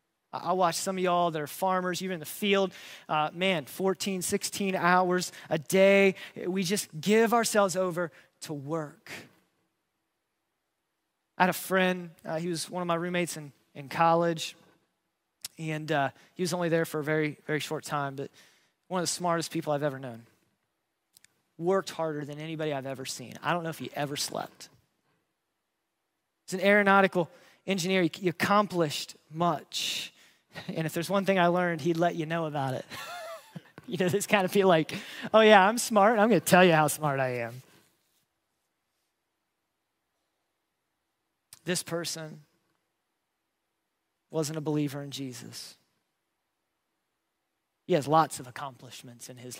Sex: male